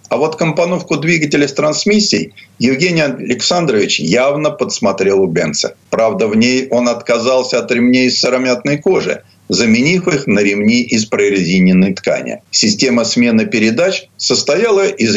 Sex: male